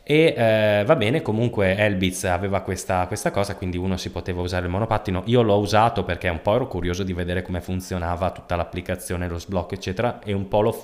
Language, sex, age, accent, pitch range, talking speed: Italian, male, 20-39, native, 85-100 Hz, 205 wpm